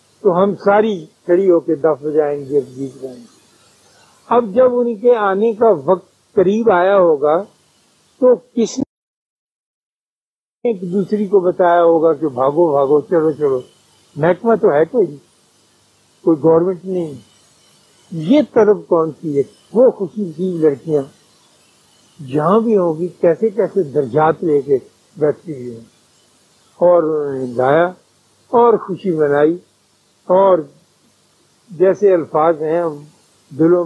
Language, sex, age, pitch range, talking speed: Urdu, male, 60-79, 150-205 Hz, 115 wpm